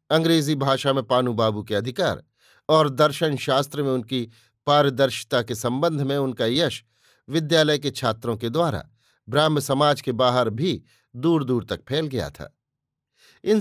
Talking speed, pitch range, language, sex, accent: 150 wpm, 125-155 Hz, Hindi, male, native